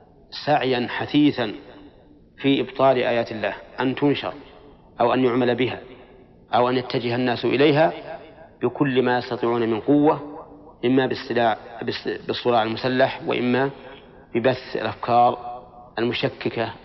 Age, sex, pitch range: 40-59, male, 120-140 Hz